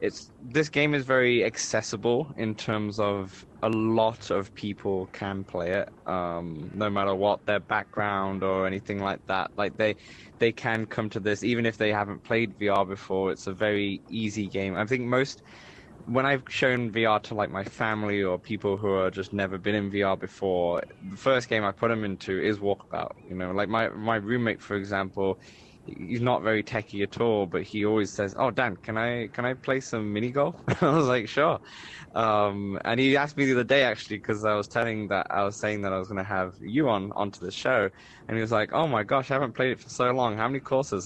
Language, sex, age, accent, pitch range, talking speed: English, male, 10-29, British, 100-120 Hz, 220 wpm